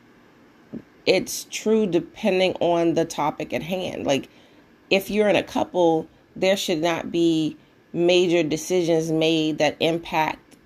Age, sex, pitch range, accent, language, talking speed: 30-49, female, 150-170 Hz, American, English, 130 wpm